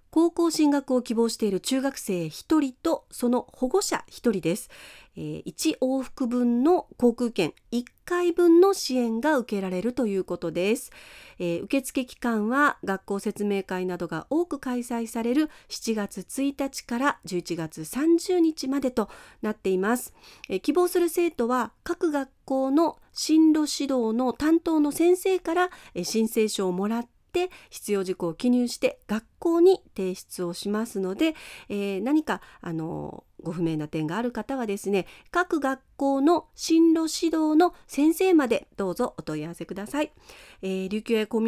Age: 40-59